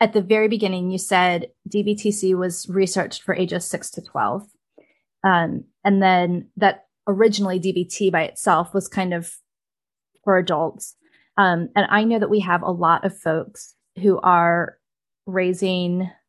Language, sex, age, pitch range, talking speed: English, female, 20-39, 180-220 Hz, 150 wpm